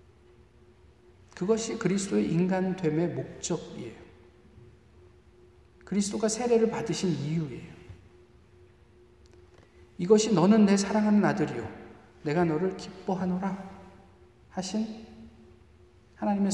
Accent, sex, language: native, male, Korean